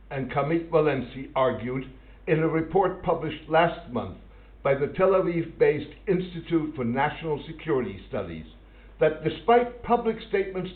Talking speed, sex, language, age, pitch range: 130 wpm, male, English, 60-79, 125-170 Hz